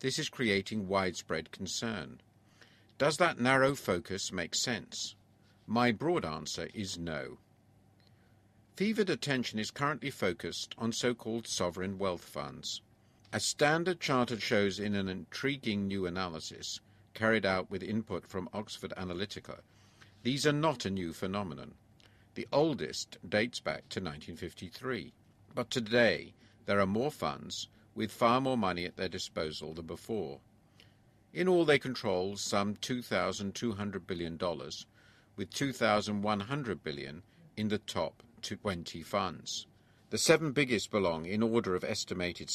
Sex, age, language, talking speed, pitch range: male, 50-69, English, 130 wpm, 95-120 Hz